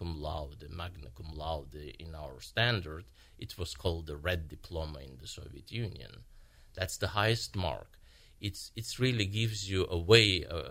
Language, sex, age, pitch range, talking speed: English, male, 50-69, 75-105 Hz, 165 wpm